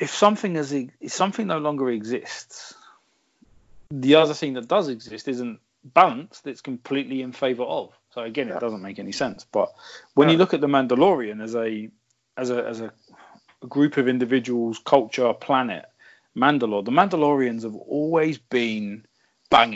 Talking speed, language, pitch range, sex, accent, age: 160 wpm, English, 110-140 Hz, male, British, 30-49